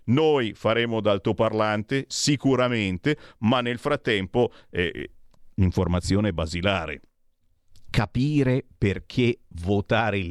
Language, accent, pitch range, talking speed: Italian, native, 100-130 Hz, 80 wpm